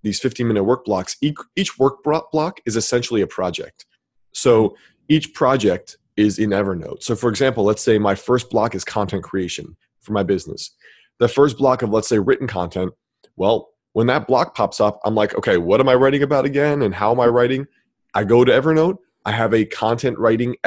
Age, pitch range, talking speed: 20-39, 105-130 Hz, 200 wpm